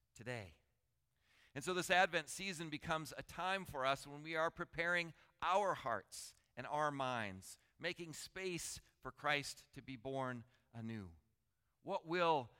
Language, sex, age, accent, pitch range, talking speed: English, male, 50-69, American, 115-150 Hz, 145 wpm